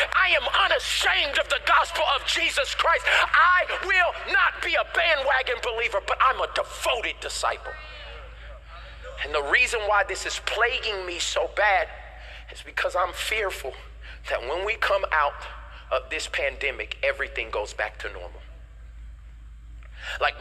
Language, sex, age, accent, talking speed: English, male, 40-59, American, 145 wpm